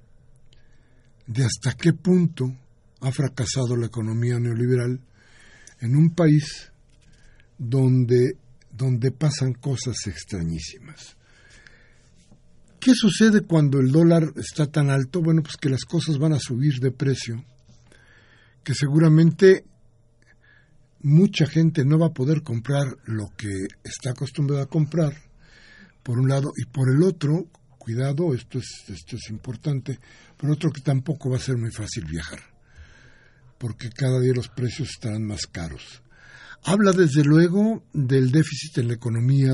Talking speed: 135 wpm